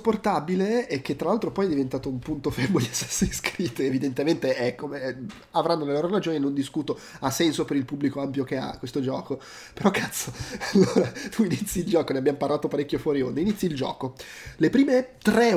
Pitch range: 150-225 Hz